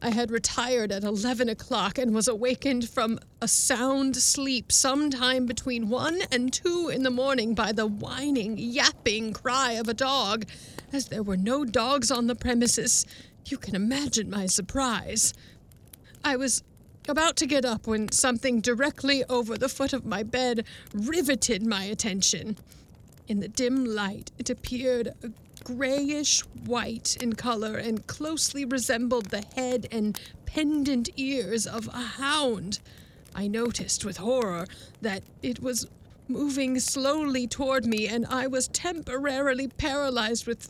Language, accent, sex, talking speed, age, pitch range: English, American, female, 145 wpm, 40-59, 220-270 Hz